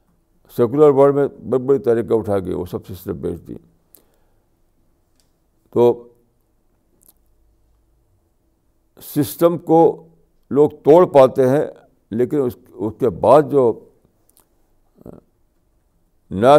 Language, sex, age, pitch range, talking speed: Urdu, male, 60-79, 100-120 Hz, 95 wpm